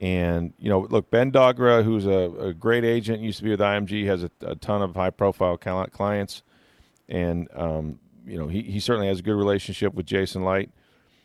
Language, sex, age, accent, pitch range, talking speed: English, male, 40-59, American, 95-115 Hz, 195 wpm